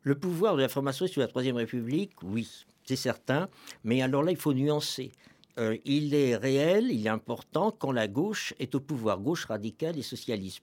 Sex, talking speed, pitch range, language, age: male, 205 wpm, 115-160 Hz, French, 60-79